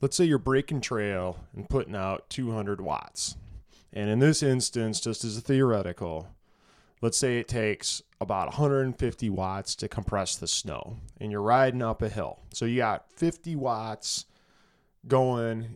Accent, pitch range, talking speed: American, 105-135 Hz, 155 wpm